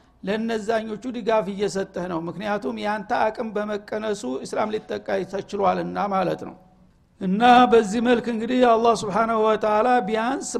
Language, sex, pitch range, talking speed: Amharic, male, 200-225 Hz, 125 wpm